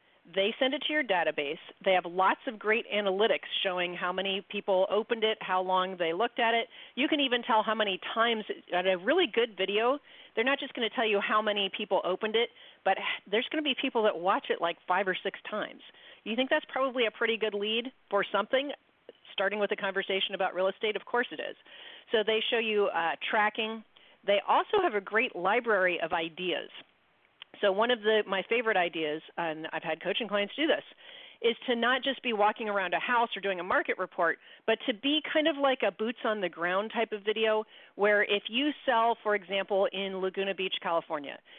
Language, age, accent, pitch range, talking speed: English, 40-59, American, 190-235 Hz, 215 wpm